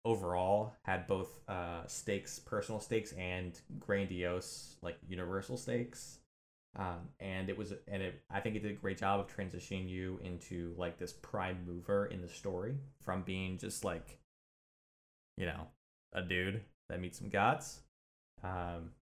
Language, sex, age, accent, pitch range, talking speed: English, male, 20-39, American, 90-105 Hz, 155 wpm